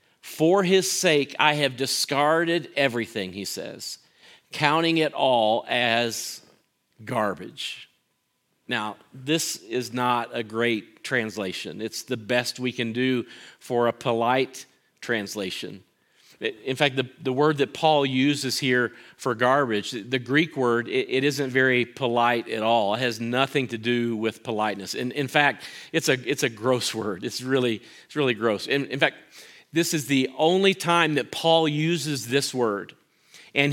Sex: male